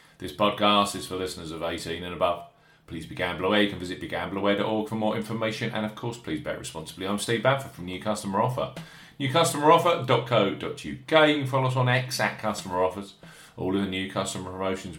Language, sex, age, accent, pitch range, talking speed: English, male, 40-59, British, 95-135 Hz, 190 wpm